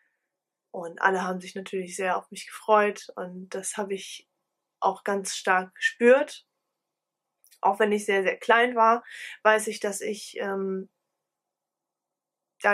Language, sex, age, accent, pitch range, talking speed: German, female, 20-39, German, 185-225 Hz, 140 wpm